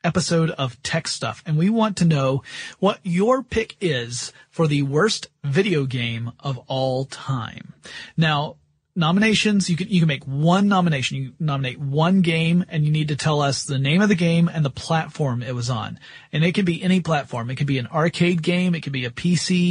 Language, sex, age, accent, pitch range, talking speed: English, male, 30-49, American, 140-175 Hz, 205 wpm